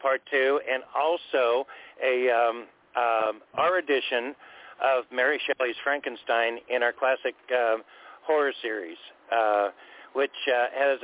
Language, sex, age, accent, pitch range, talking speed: English, male, 50-69, American, 120-135 Hz, 125 wpm